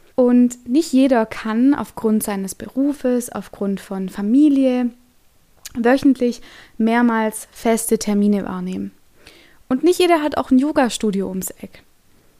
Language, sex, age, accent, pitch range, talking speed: German, female, 20-39, German, 210-260 Hz, 115 wpm